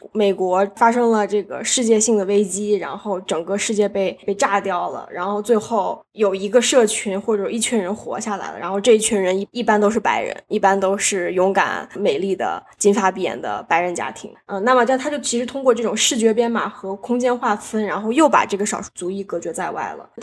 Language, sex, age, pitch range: Chinese, female, 10-29, 195-230 Hz